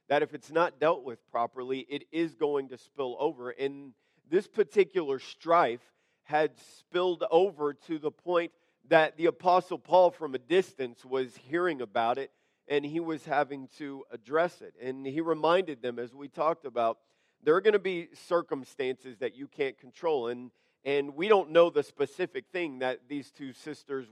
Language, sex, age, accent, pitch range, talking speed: English, male, 50-69, American, 140-180 Hz, 175 wpm